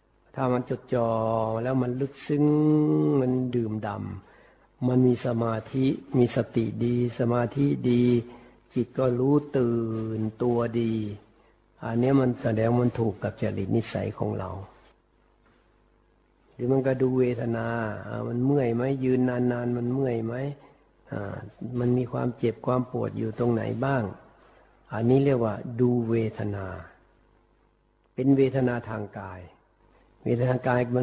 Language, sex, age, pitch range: Thai, male, 60-79, 110-125 Hz